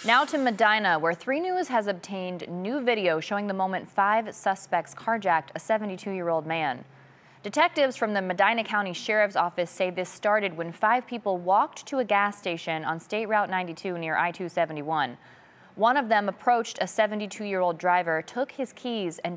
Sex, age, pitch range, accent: female, 20-39, 175-220 Hz, American